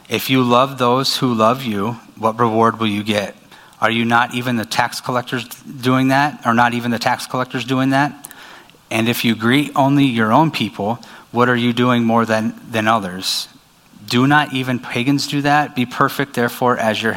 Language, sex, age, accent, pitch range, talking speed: English, male, 30-49, American, 110-125 Hz, 195 wpm